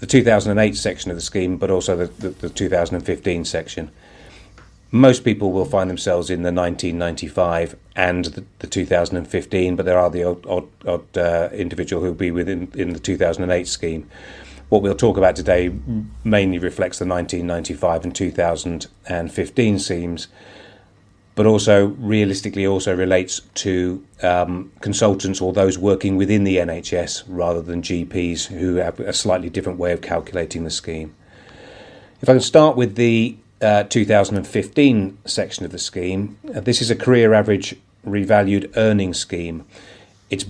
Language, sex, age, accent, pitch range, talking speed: English, male, 30-49, British, 90-105 Hz, 155 wpm